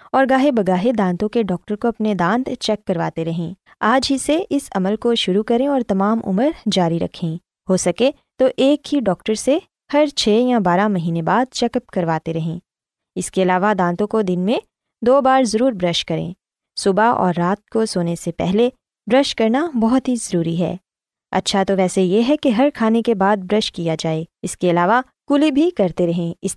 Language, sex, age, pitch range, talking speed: Urdu, female, 20-39, 180-255 Hz, 200 wpm